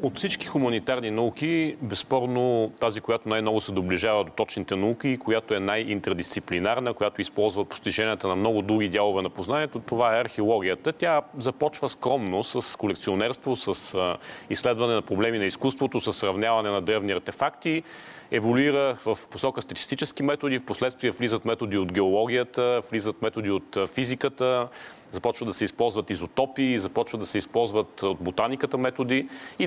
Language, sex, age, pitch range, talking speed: Bulgarian, male, 40-59, 105-130 Hz, 150 wpm